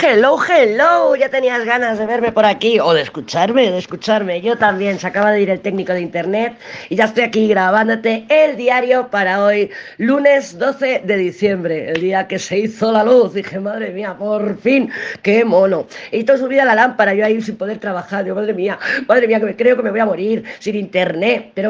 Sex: female